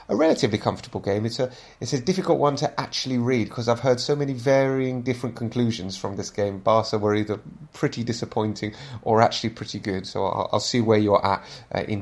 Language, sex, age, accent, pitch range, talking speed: English, male, 30-49, British, 110-140 Hz, 210 wpm